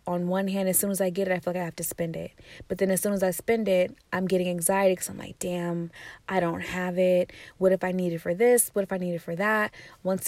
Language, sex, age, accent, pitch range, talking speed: English, female, 20-39, American, 175-200 Hz, 300 wpm